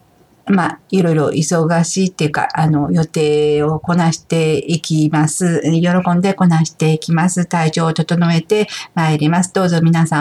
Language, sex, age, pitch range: Japanese, female, 50-69, 160-195 Hz